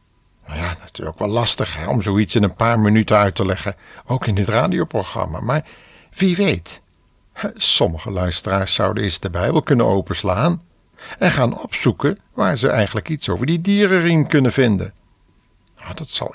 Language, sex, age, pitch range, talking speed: Dutch, male, 60-79, 90-125 Hz, 170 wpm